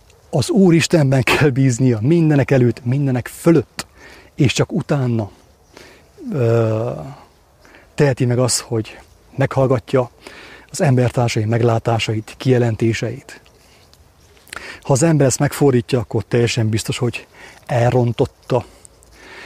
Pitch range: 115-140 Hz